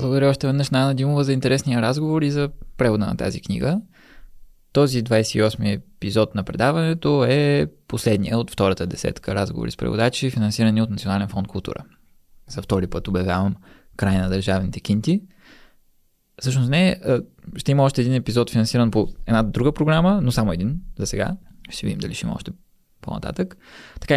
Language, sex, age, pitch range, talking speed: Bulgarian, male, 20-39, 100-140 Hz, 160 wpm